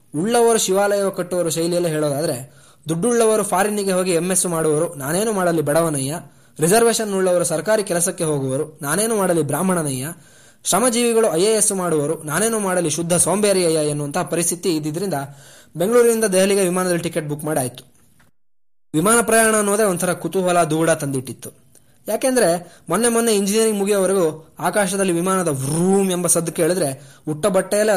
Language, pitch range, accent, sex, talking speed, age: Kannada, 155-195 Hz, native, male, 120 wpm, 20-39